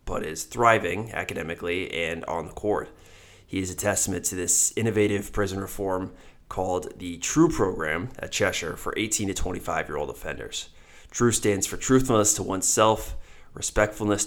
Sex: male